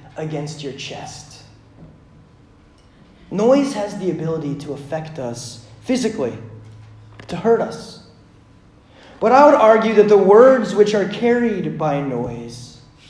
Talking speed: 120 wpm